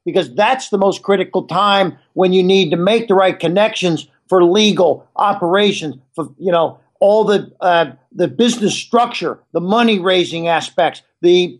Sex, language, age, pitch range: male, English, 50-69, 170-205 Hz